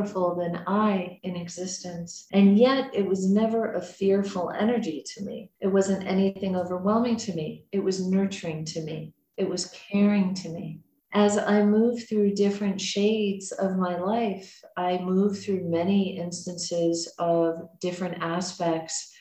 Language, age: English, 40-59